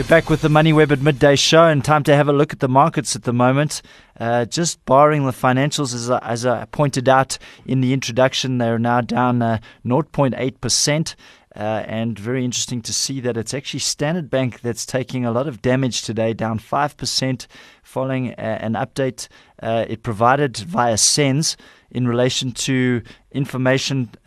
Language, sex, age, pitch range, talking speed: English, male, 20-39, 115-135 Hz, 175 wpm